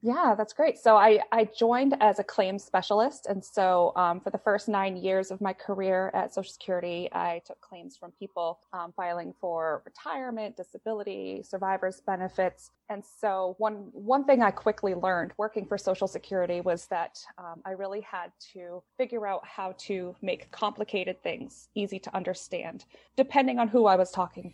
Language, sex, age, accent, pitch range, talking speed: English, female, 20-39, American, 180-210 Hz, 175 wpm